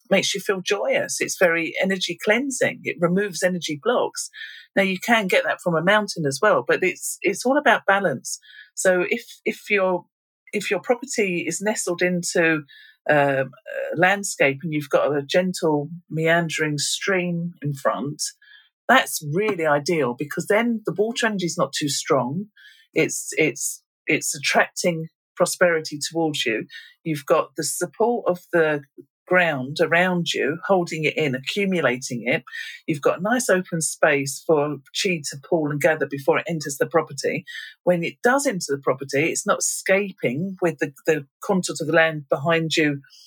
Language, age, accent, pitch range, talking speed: English, 50-69, British, 155-200 Hz, 170 wpm